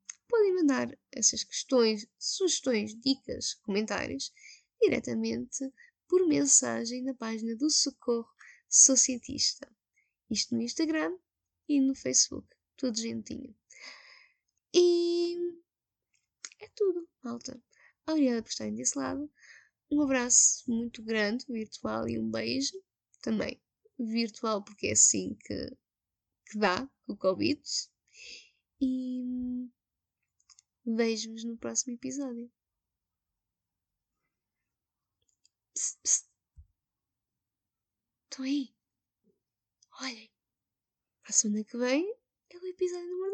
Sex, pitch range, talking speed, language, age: female, 215-300 Hz, 95 wpm, Portuguese, 10-29